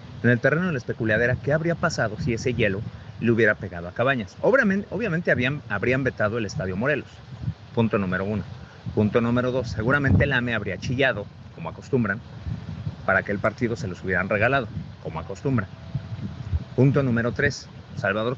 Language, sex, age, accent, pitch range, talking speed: Spanish, male, 50-69, Mexican, 105-135 Hz, 165 wpm